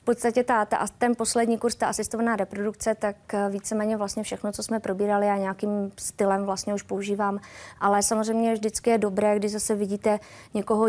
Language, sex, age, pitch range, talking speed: Czech, female, 20-39, 200-210 Hz, 175 wpm